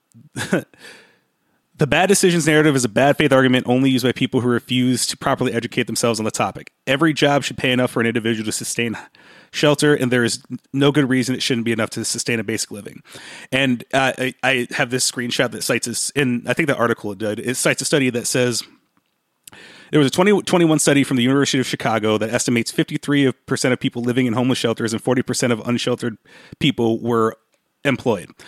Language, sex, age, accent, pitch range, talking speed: English, male, 30-49, American, 120-140 Hz, 205 wpm